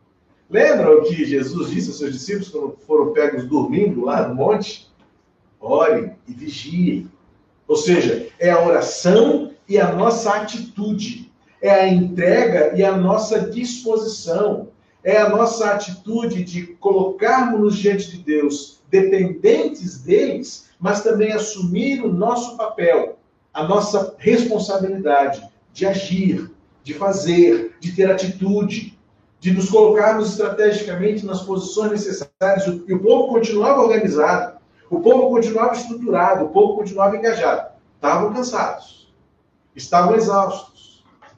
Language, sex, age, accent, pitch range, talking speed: Portuguese, male, 50-69, Brazilian, 170-215 Hz, 125 wpm